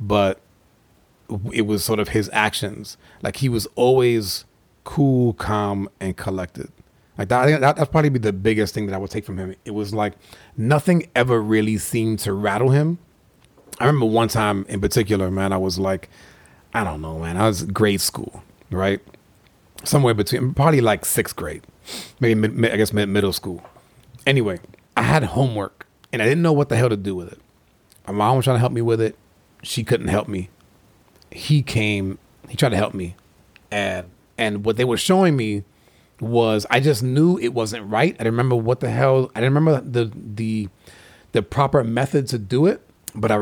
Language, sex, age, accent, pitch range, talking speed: English, male, 30-49, American, 100-130 Hz, 185 wpm